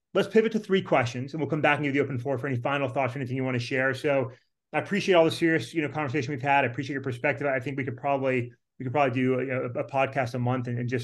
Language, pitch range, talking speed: English, 130-165 Hz, 310 wpm